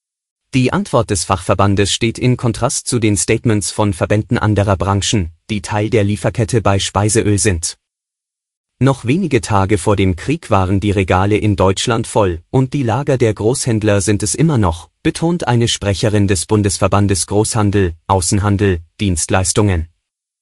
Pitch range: 100-125 Hz